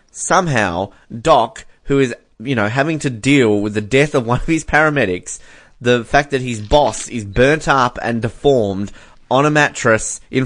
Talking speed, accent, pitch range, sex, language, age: 180 wpm, Australian, 110-150 Hz, male, English, 20-39